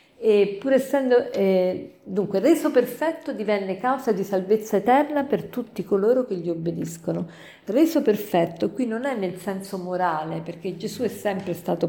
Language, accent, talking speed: Italian, native, 155 wpm